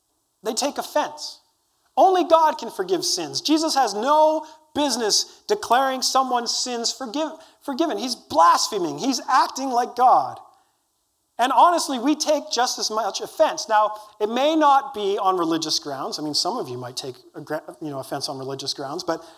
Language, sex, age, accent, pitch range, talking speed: English, male, 40-59, American, 195-305 Hz, 155 wpm